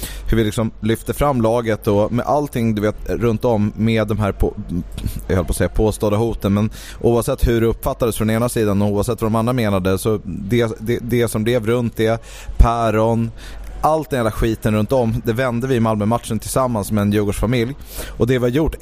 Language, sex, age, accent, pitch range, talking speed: English, male, 30-49, Swedish, 105-125 Hz, 215 wpm